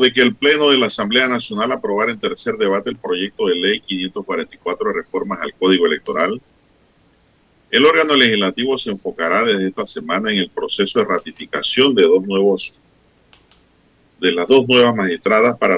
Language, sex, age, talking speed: Spanish, male, 40-59, 160 wpm